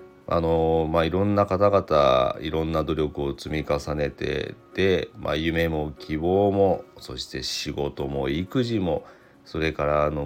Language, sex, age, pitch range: Japanese, male, 40-59, 75-95 Hz